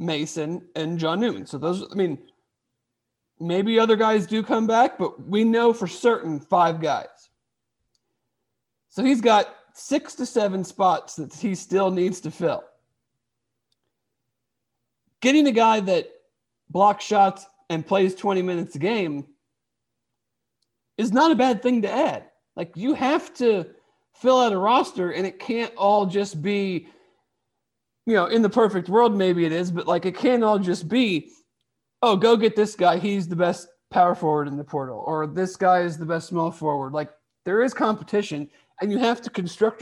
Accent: American